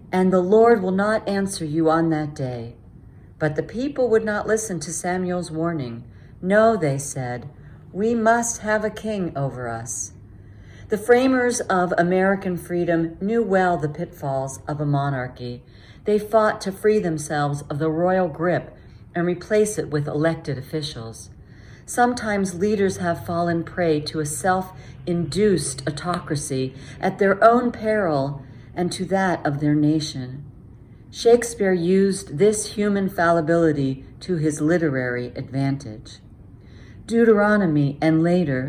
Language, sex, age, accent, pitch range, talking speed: English, female, 50-69, American, 140-205 Hz, 135 wpm